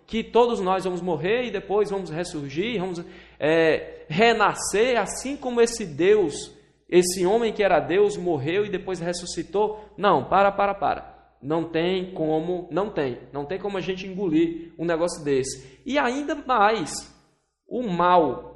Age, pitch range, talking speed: 20-39, 175-240 Hz, 150 wpm